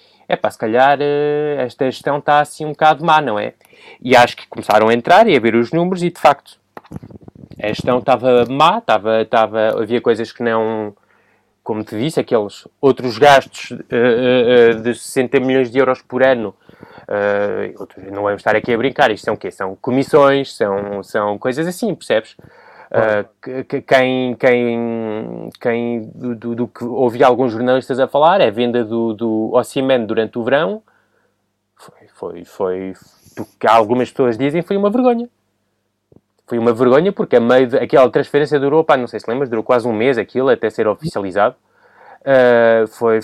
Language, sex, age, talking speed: Portuguese, male, 20-39, 180 wpm